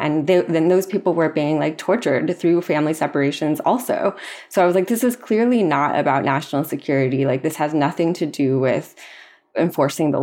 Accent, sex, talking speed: American, female, 190 wpm